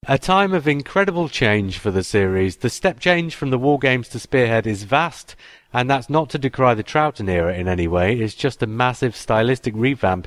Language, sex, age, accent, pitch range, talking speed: English, male, 30-49, British, 105-135 Hz, 210 wpm